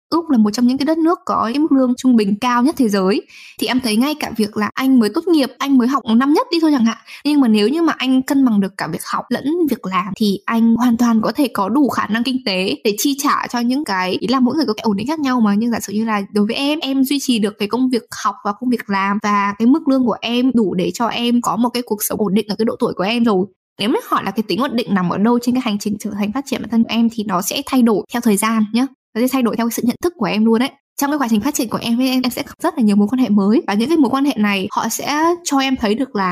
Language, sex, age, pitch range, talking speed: Vietnamese, female, 10-29, 210-265 Hz, 330 wpm